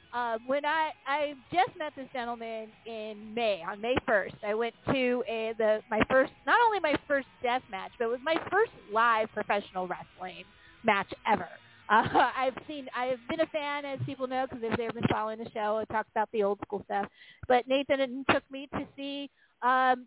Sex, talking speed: female, 195 wpm